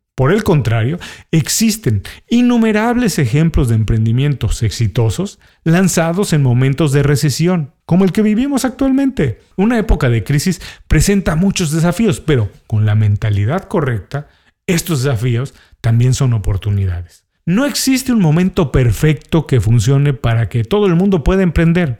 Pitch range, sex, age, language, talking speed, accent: 120-190 Hz, male, 40-59, Spanish, 135 wpm, Mexican